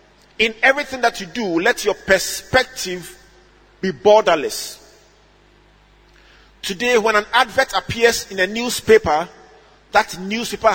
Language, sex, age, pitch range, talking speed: English, male, 40-59, 180-225 Hz, 110 wpm